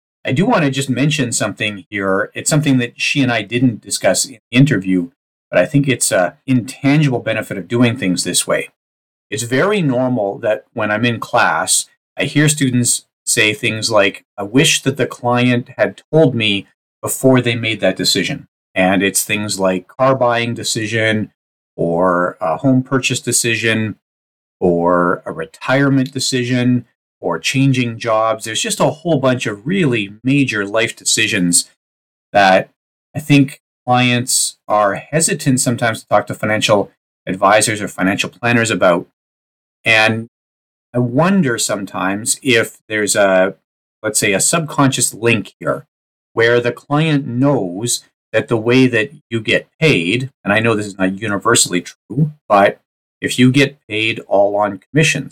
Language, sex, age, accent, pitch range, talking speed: English, male, 40-59, American, 100-130 Hz, 155 wpm